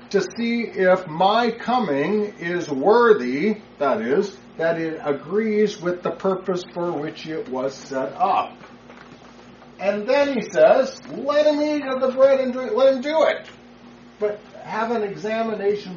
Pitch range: 145-210 Hz